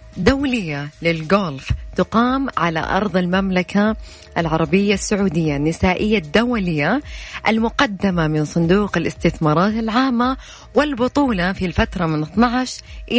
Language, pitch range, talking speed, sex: Arabic, 170-230 Hz, 90 wpm, female